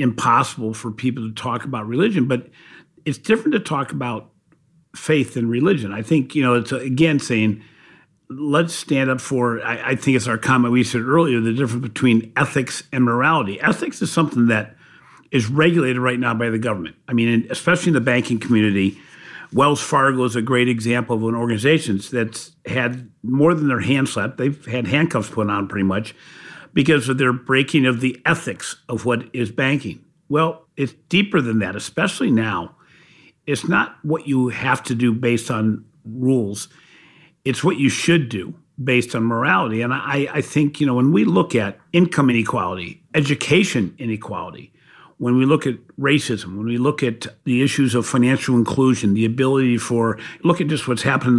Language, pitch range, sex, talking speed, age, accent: English, 115-145 Hz, male, 180 wpm, 50-69, American